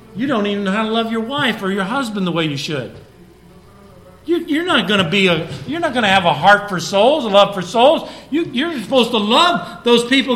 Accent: American